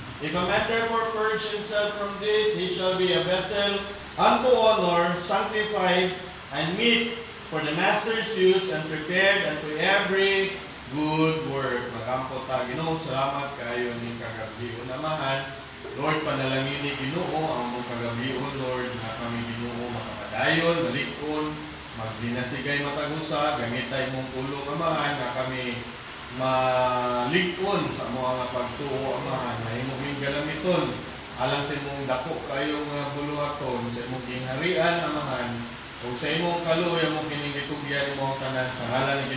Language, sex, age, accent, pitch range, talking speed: English, male, 20-39, Filipino, 130-190 Hz, 130 wpm